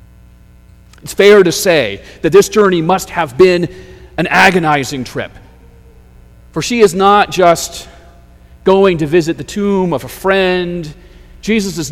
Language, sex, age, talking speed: English, male, 40-59, 140 wpm